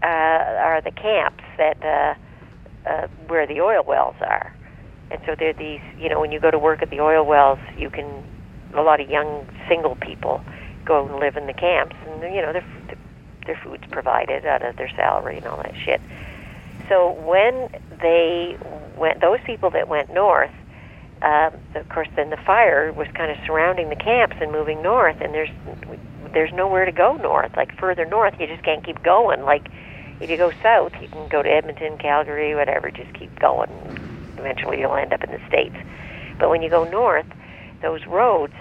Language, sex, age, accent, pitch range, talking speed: English, female, 50-69, American, 150-180 Hz, 195 wpm